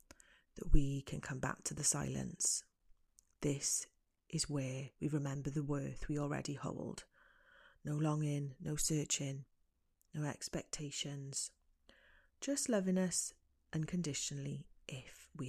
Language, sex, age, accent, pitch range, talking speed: English, female, 30-49, British, 140-170 Hz, 115 wpm